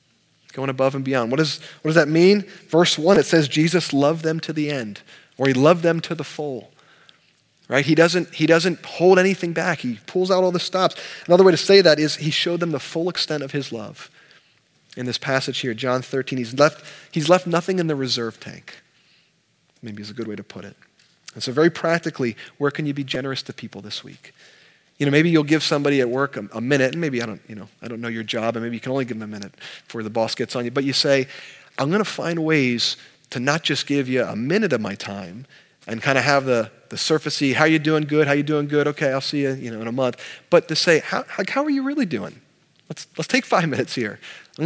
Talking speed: 250 wpm